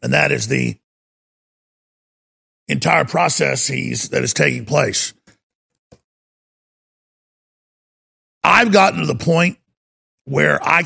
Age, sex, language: 50-69, male, English